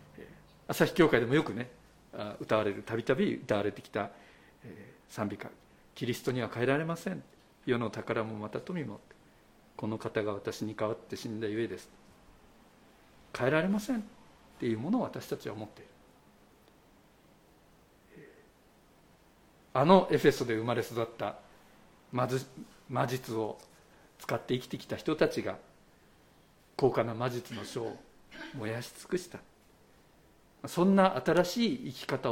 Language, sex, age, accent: Japanese, male, 50-69, native